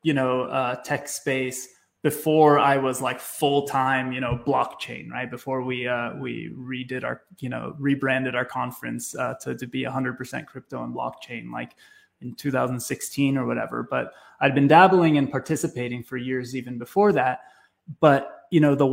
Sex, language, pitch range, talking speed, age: male, English, 130-150 Hz, 175 wpm, 20-39